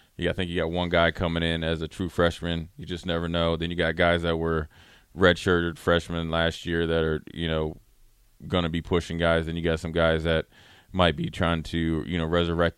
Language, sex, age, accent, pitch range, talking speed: English, male, 20-39, American, 80-90 Hz, 230 wpm